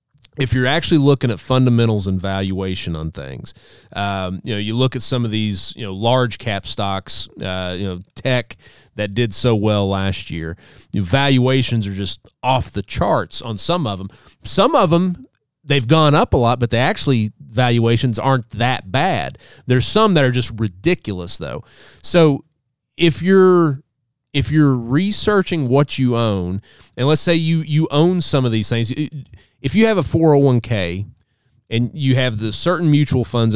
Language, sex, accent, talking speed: English, male, American, 180 wpm